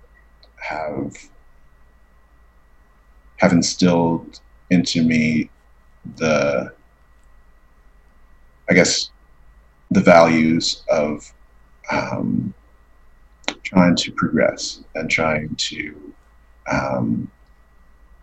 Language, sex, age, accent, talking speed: English, male, 40-59, American, 65 wpm